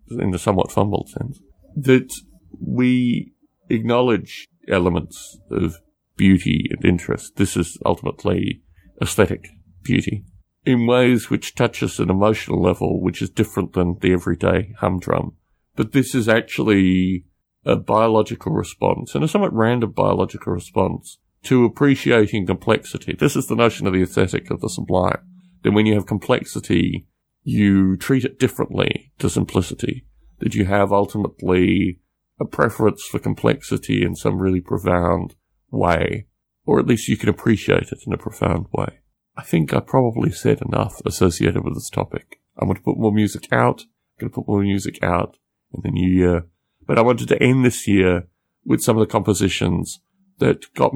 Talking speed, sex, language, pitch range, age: 160 wpm, male, English, 90-120 Hz, 50-69